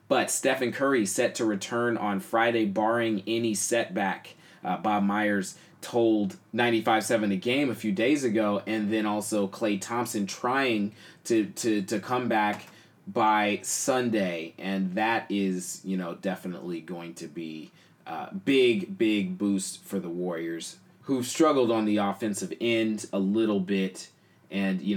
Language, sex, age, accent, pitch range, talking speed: English, male, 30-49, American, 100-120 Hz, 145 wpm